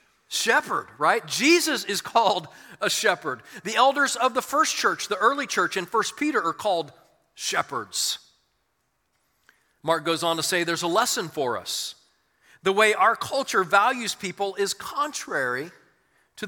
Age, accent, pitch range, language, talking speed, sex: 40-59, American, 145-200 Hz, English, 150 wpm, male